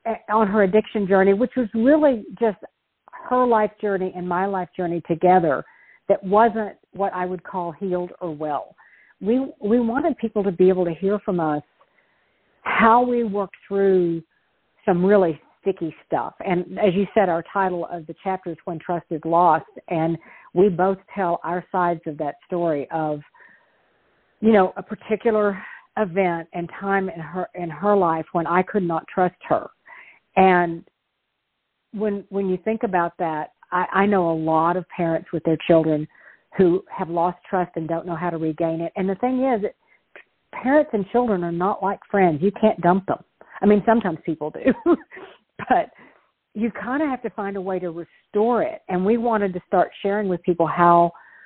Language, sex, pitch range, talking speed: English, female, 170-205 Hz, 180 wpm